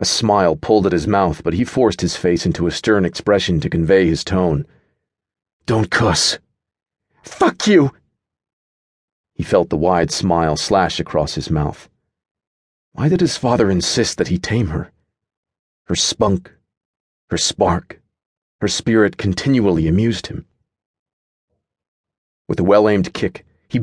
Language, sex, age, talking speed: English, male, 40-59, 140 wpm